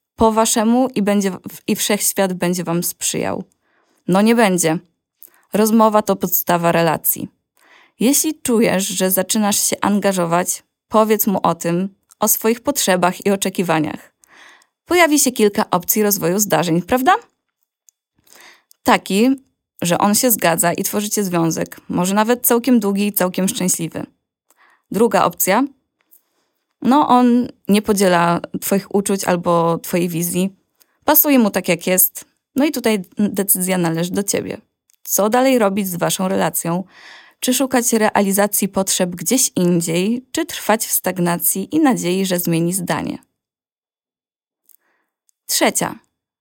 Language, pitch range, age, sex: Polish, 180-225 Hz, 20-39, female